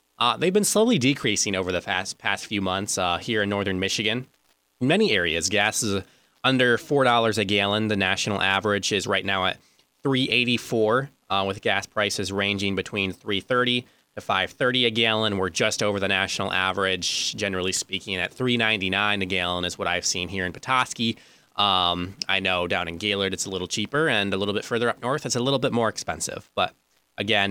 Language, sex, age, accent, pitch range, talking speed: English, male, 20-39, American, 95-115 Hz, 190 wpm